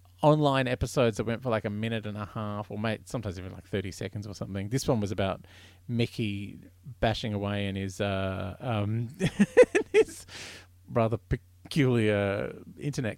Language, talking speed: English, 165 wpm